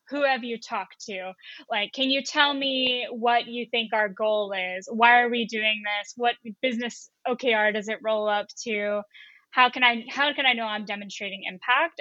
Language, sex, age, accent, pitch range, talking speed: English, female, 10-29, American, 210-260 Hz, 190 wpm